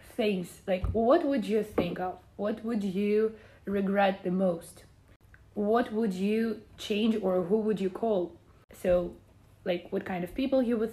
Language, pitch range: English, 185-215 Hz